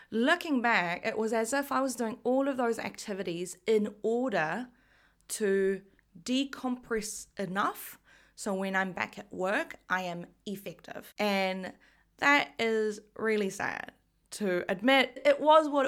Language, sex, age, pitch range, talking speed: English, female, 20-39, 195-250 Hz, 140 wpm